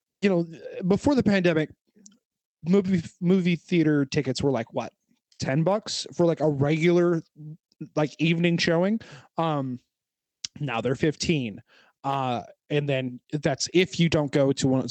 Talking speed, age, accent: 140 wpm, 20-39, American